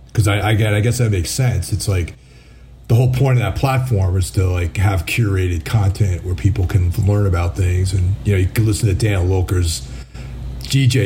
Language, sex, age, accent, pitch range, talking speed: English, male, 30-49, American, 90-110 Hz, 200 wpm